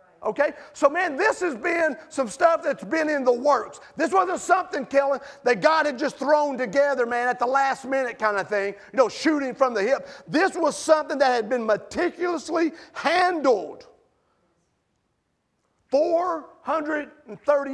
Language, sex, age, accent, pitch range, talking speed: English, male, 50-69, American, 245-330 Hz, 155 wpm